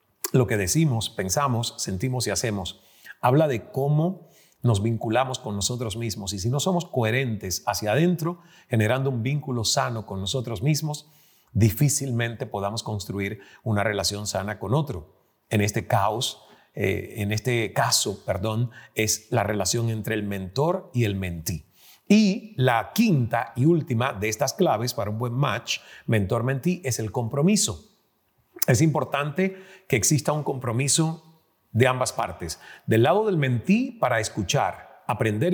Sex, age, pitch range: male, 40-59, 110-155 Hz